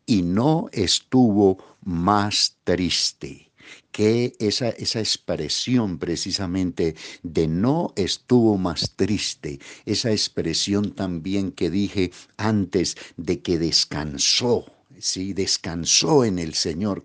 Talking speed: 100 wpm